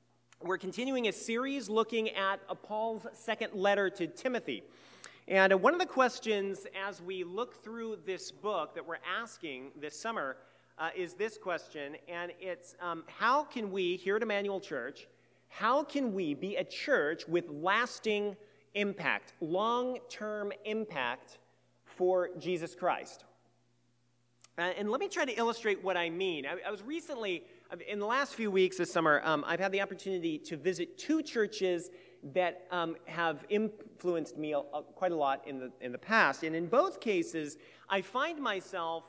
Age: 40-59